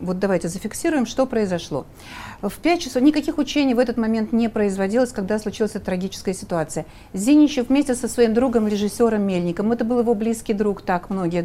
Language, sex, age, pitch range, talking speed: Russian, female, 60-79, 200-260 Hz, 170 wpm